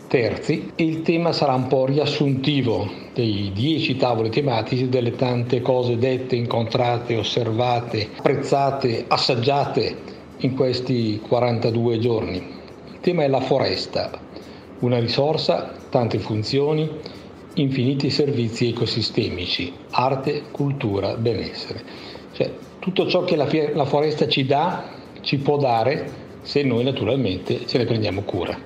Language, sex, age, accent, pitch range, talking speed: Italian, male, 60-79, native, 115-140 Hz, 115 wpm